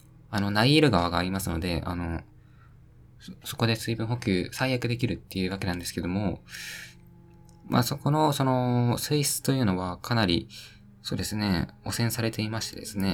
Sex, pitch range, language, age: male, 95-125 Hz, Japanese, 20-39